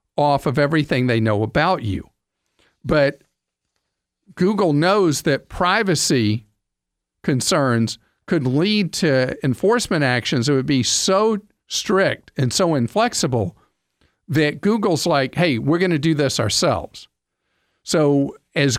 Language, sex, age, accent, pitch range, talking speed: English, male, 50-69, American, 125-175 Hz, 120 wpm